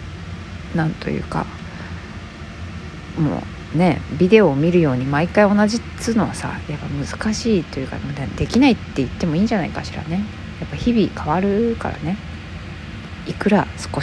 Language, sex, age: Japanese, female, 40-59